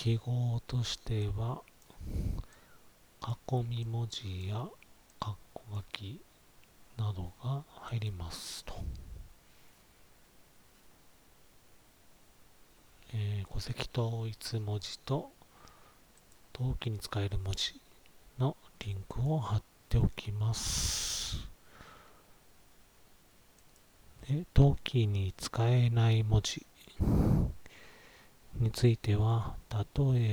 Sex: male